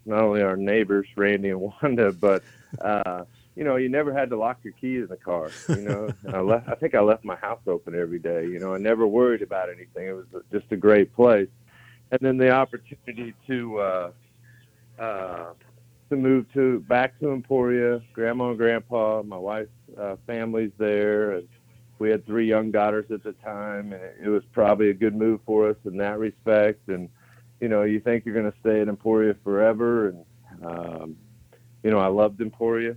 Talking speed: 200 wpm